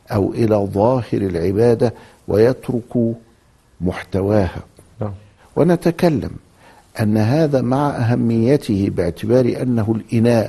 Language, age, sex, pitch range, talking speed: Arabic, 60-79, male, 90-120 Hz, 80 wpm